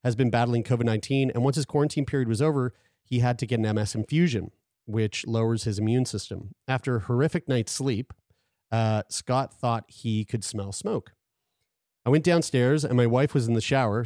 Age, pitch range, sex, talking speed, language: 30-49, 110-130 Hz, male, 190 wpm, English